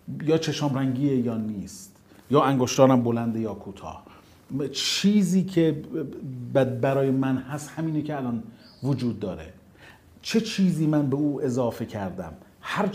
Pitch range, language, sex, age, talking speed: 120-170 Hz, Persian, male, 40-59, 135 wpm